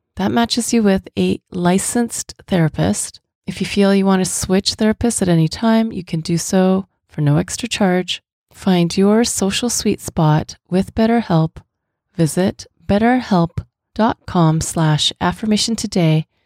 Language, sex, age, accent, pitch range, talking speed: English, female, 30-49, American, 165-210 Hz, 140 wpm